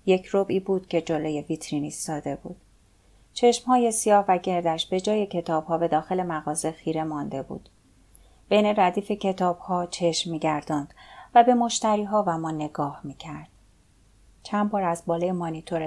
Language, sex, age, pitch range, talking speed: Persian, female, 30-49, 155-205 Hz, 145 wpm